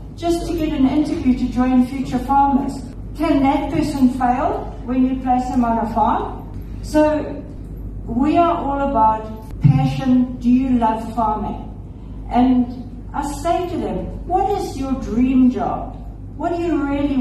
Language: English